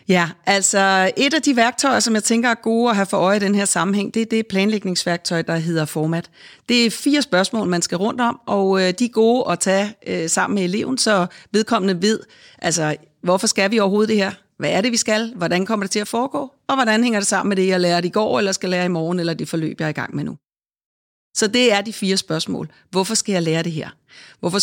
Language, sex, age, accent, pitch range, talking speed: Danish, female, 40-59, native, 170-220 Hz, 250 wpm